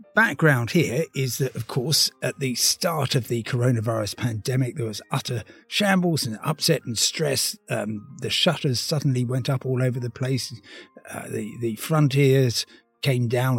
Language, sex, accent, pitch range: English, male, British, 120-155 Hz